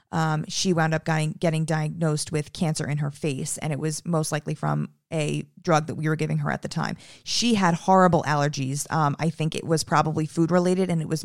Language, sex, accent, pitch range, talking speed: English, female, American, 155-175 Hz, 225 wpm